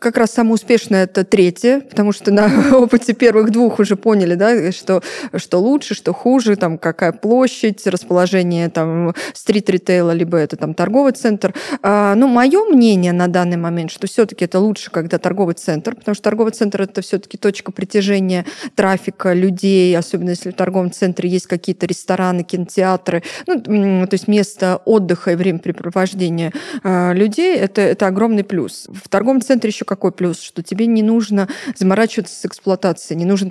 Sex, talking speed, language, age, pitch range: female, 165 wpm, Russian, 20-39, 180-220 Hz